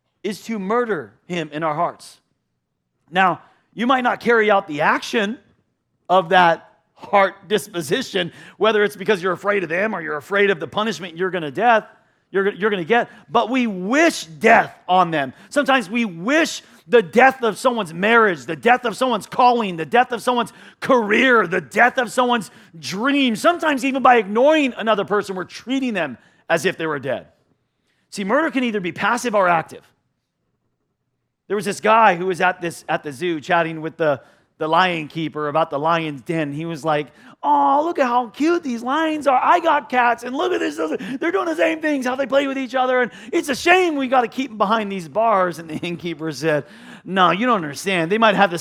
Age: 40-59